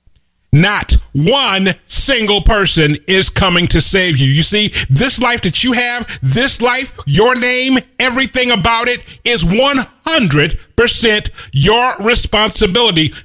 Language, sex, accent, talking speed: English, male, American, 120 wpm